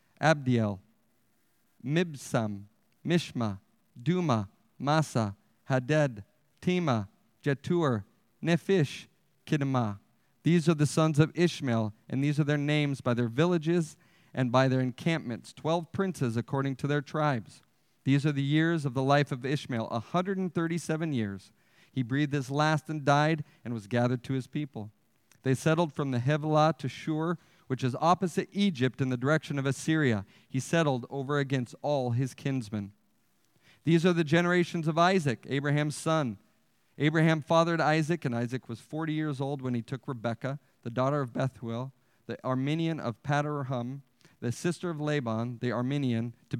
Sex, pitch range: male, 125-160 Hz